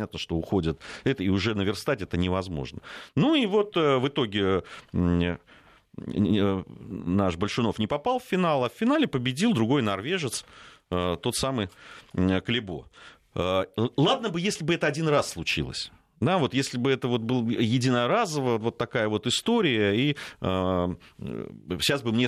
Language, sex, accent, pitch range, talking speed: Russian, male, native, 90-135 Hz, 145 wpm